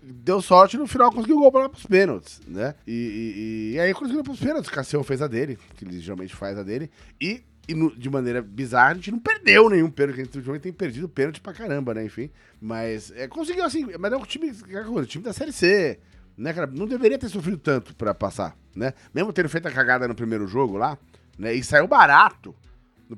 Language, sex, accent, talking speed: Portuguese, male, Brazilian, 240 wpm